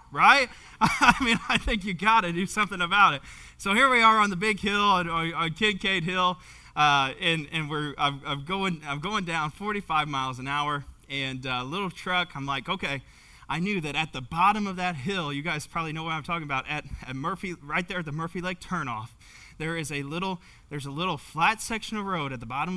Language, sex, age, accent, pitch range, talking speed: English, male, 20-39, American, 145-190 Hz, 225 wpm